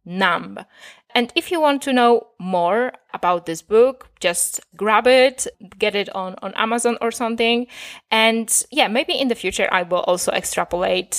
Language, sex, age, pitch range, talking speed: English, female, 20-39, 190-265 Hz, 165 wpm